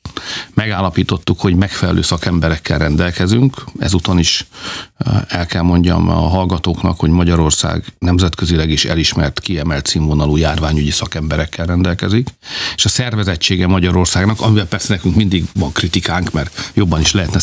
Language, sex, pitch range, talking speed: Hungarian, male, 85-100 Hz, 125 wpm